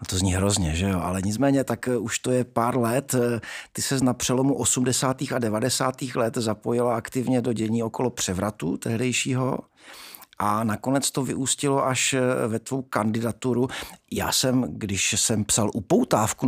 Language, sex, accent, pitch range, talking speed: Czech, male, native, 115-140 Hz, 155 wpm